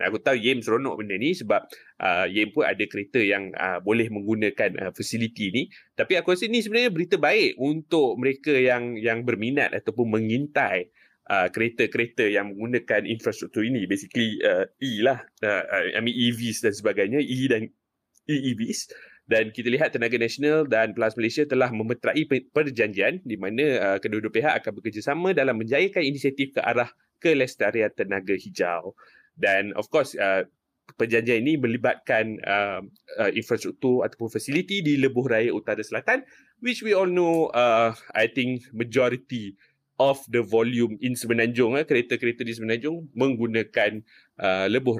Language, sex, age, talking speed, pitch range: Malay, male, 20-39, 155 wpm, 110-135 Hz